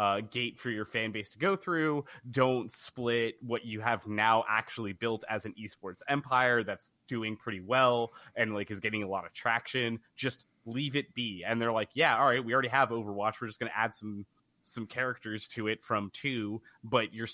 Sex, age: male, 20-39